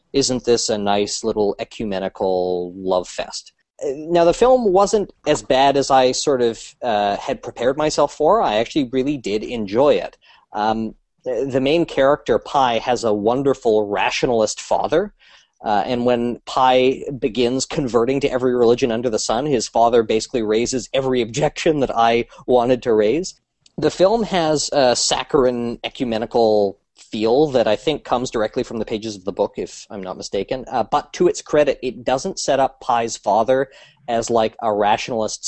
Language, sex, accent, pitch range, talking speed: English, male, American, 110-140 Hz, 165 wpm